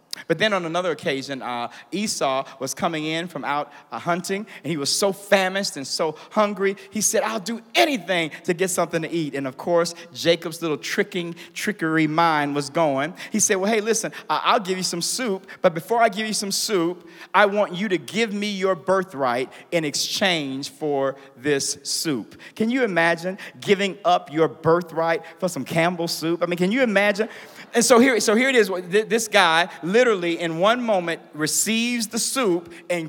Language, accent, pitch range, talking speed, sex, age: English, American, 150-195 Hz, 190 wpm, male, 40-59